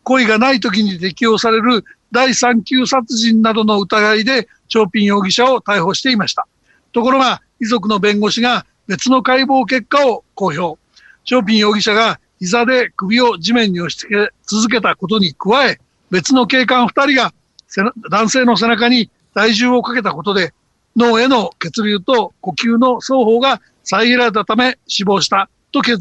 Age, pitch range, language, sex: 60-79, 205-245 Hz, Japanese, male